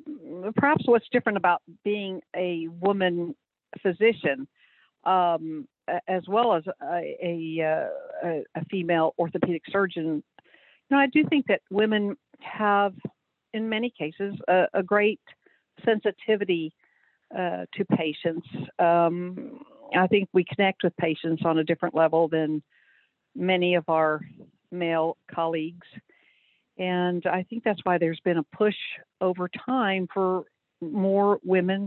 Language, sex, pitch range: English, female, 170-220 Hz